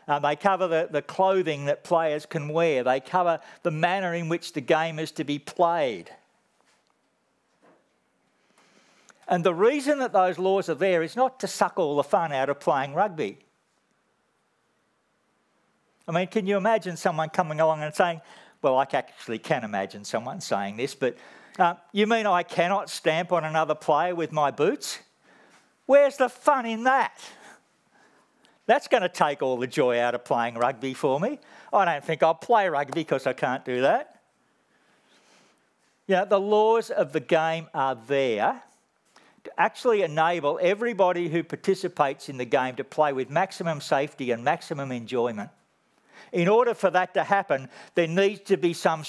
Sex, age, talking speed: male, 50-69, 165 wpm